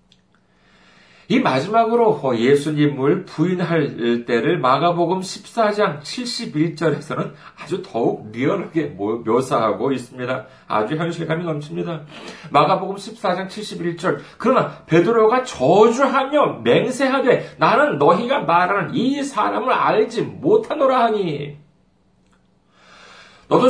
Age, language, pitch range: 40-59, Korean, 160-255 Hz